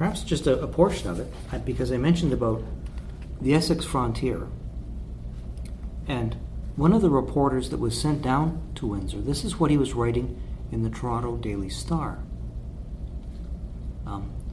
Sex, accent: male, American